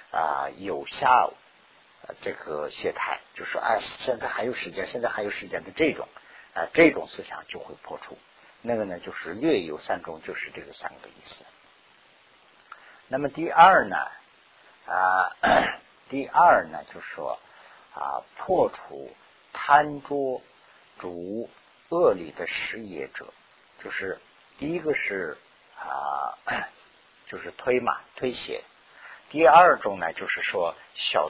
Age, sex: 50-69, male